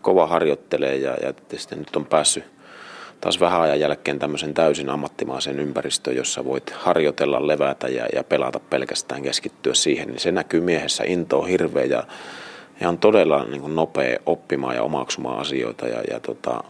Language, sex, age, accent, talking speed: Finnish, male, 30-49, native, 160 wpm